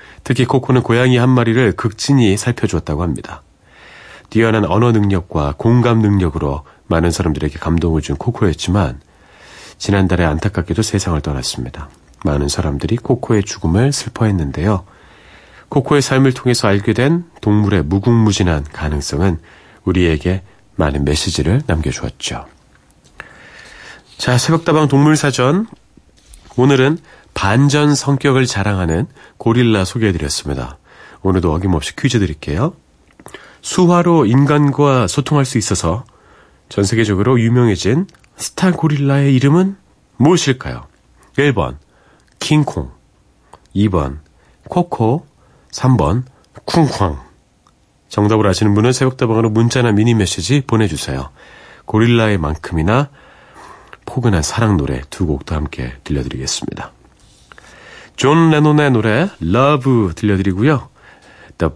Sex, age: male, 40-59